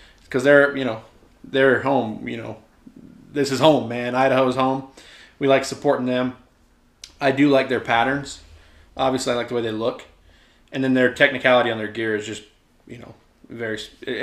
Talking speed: 180 wpm